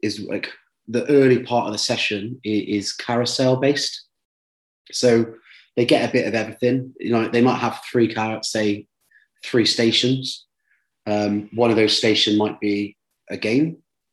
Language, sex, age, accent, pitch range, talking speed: English, male, 30-49, British, 100-115 Hz, 160 wpm